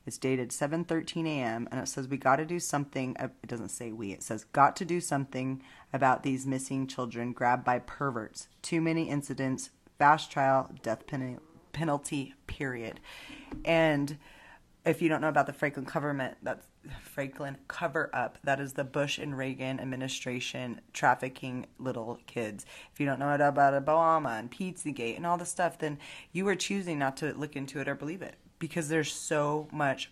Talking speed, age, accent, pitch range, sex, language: 170 wpm, 30-49, American, 130-150 Hz, female, English